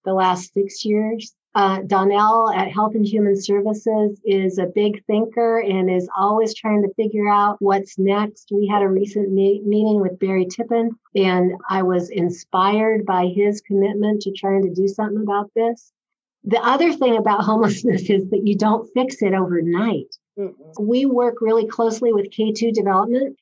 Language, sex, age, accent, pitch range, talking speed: English, female, 50-69, American, 195-220 Hz, 170 wpm